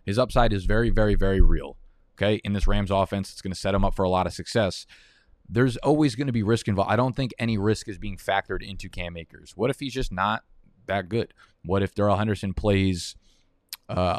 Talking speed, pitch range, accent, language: 230 wpm, 95-115 Hz, American, English